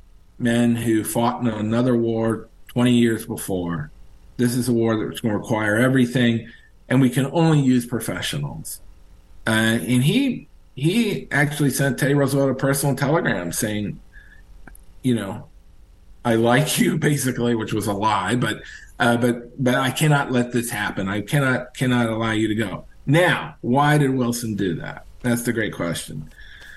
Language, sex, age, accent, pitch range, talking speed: English, male, 40-59, American, 110-140 Hz, 160 wpm